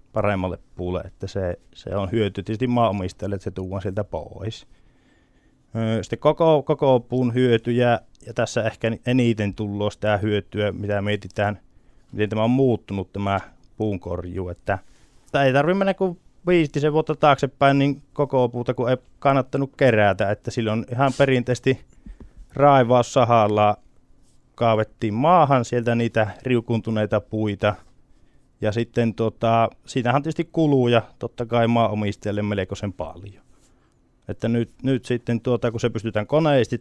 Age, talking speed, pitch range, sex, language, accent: 20-39, 130 wpm, 105-125 Hz, male, Finnish, native